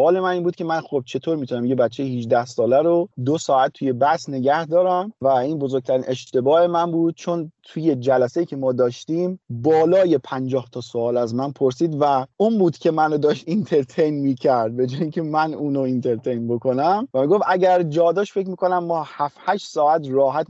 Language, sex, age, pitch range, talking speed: Persian, male, 30-49, 135-175 Hz, 190 wpm